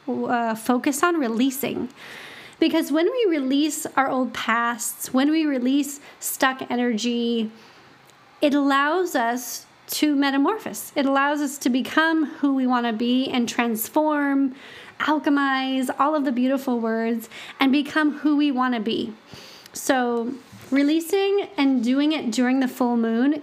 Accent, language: American, English